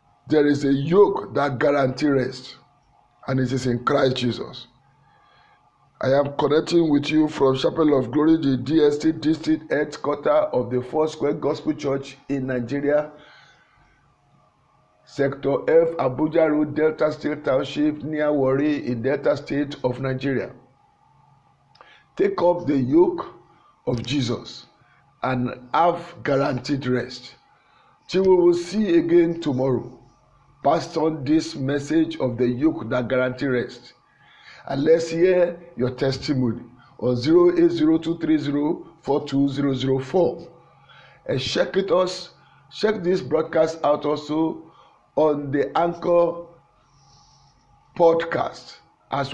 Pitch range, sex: 135-165 Hz, male